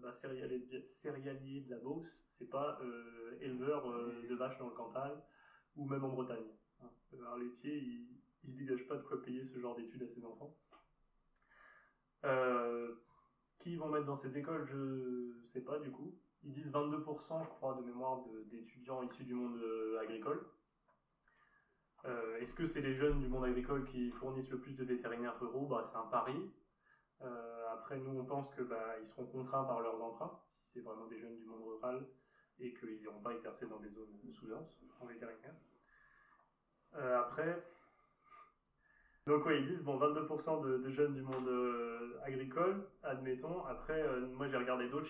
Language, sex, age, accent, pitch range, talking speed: French, male, 20-39, French, 120-150 Hz, 175 wpm